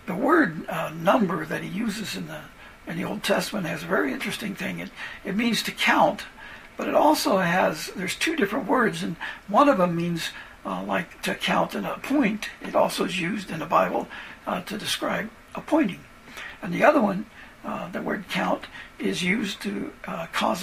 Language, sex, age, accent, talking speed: English, male, 60-79, American, 190 wpm